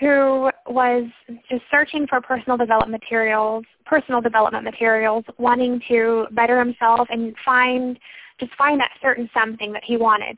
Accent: American